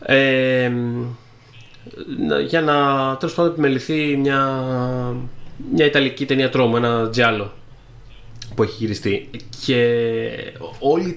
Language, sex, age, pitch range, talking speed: Greek, male, 30-49, 120-145 Hz, 90 wpm